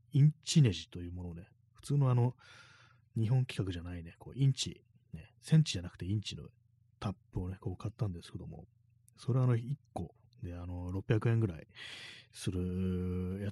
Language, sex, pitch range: Japanese, male, 95-125 Hz